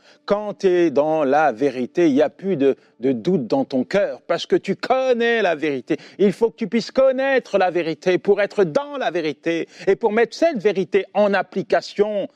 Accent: French